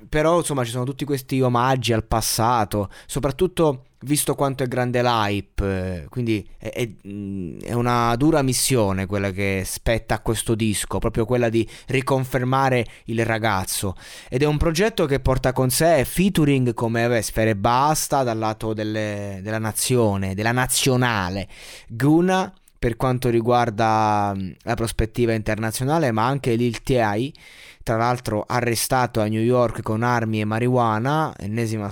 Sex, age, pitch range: male, 20-39, 110-135 Hz